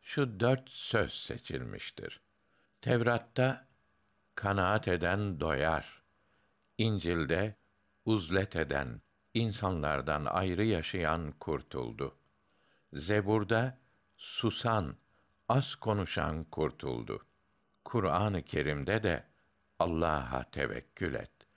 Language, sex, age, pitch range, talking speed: Turkish, male, 60-79, 80-115 Hz, 70 wpm